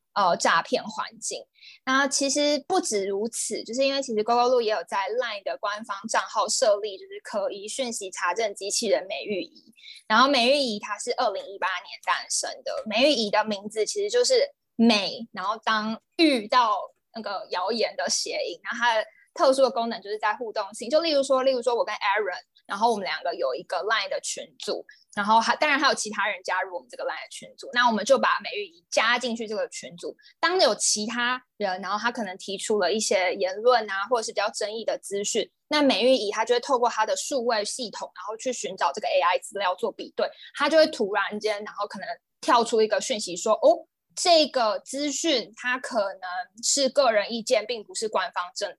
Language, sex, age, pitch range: Chinese, female, 20-39, 210-290 Hz